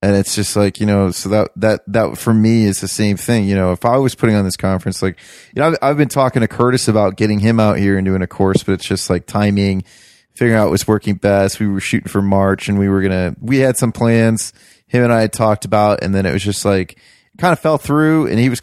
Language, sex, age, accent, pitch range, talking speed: English, male, 30-49, American, 100-125 Hz, 275 wpm